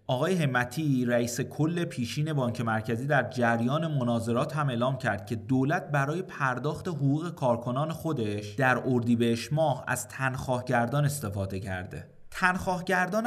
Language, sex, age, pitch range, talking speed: Persian, male, 30-49, 125-175 Hz, 125 wpm